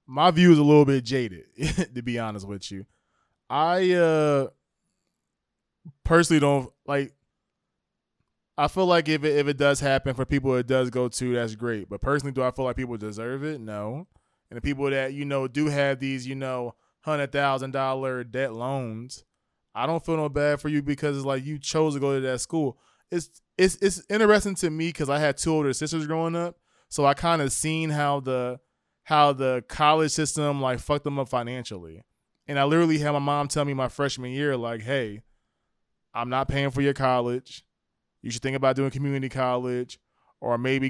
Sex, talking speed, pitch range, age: male, 195 wpm, 125-150 Hz, 20-39